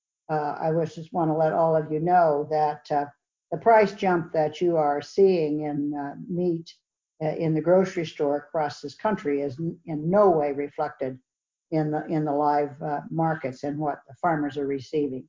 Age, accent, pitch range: 50-69, American, 145-165 Hz